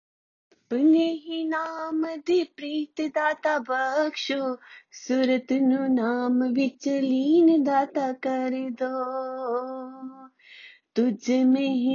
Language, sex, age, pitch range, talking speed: Hindi, female, 30-49, 250-275 Hz, 60 wpm